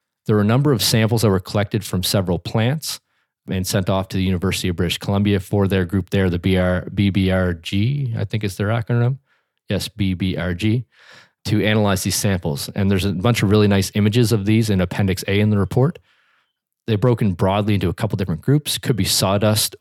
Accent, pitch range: American, 95-115 Hz